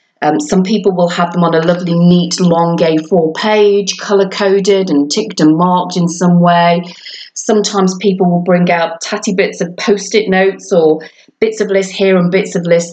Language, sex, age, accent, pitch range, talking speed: English, female, 30-49, British, 165-200 Hz, 185 wpm